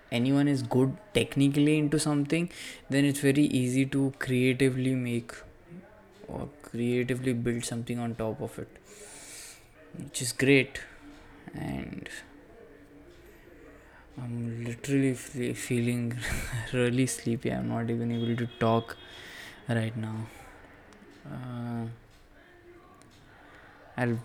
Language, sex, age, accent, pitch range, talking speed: English, male, 20-39, Indian, 110-130 Hz, 95 wpm